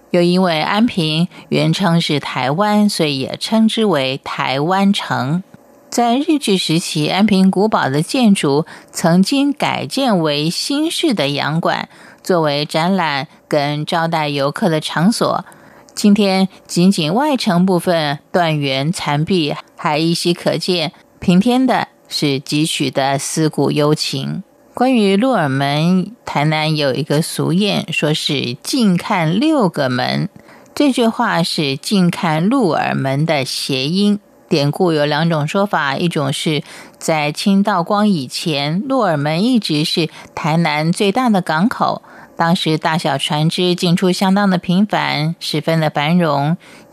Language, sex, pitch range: Chinese, female, 150-200 Hz